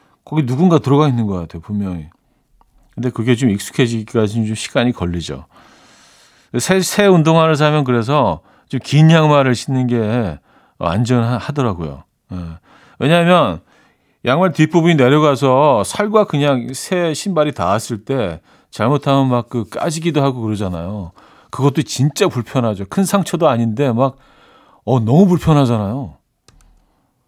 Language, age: Korean, 40-59